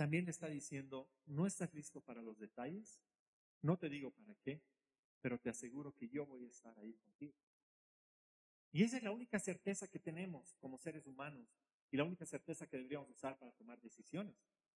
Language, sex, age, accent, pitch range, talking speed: Spanish, male, 40-59, Mexican, 140-190 Hz, 185 wpm